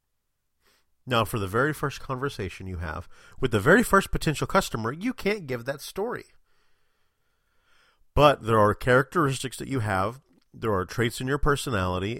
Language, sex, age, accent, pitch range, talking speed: English, male, 40-59, American, 100-135 Hz, 155 wpm